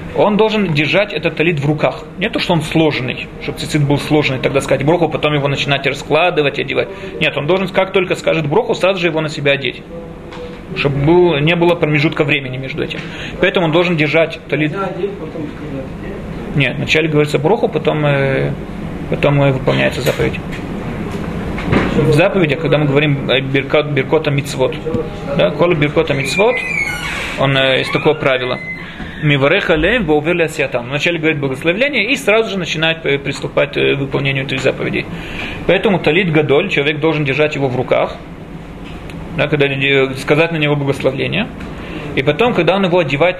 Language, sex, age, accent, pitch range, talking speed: Russian, male, 30-49, native, 140-170 Hz, 145 wpm